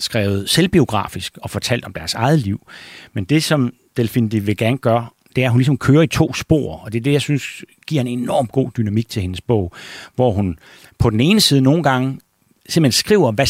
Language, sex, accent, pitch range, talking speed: Danish, male, native, 100-125 Hz, 220 wpm